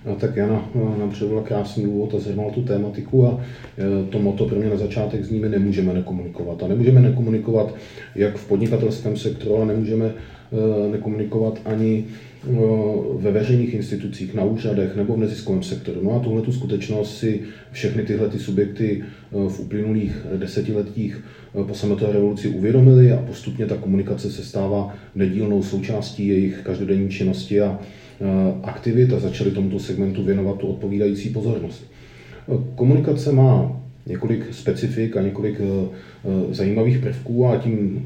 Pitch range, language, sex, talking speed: 100-110 Hz, Czech, male, 140 wpm